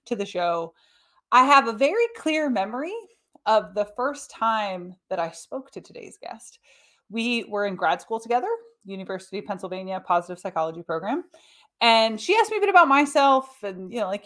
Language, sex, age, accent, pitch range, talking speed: English, female, 30-49, American, 195-300 Hz, 180 wpm